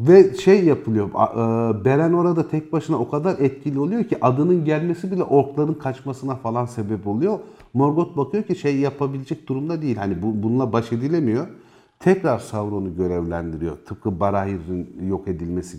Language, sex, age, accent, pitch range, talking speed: Turkish, male, 50-69, native, 105-145 Hz, 145 wpm